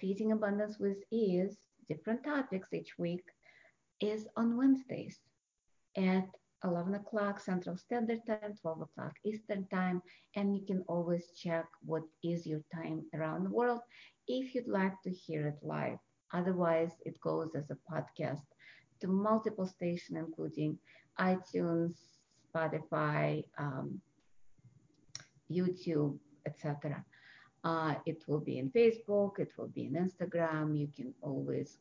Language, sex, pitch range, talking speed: English, female, 150-185 Hz, 130 wpm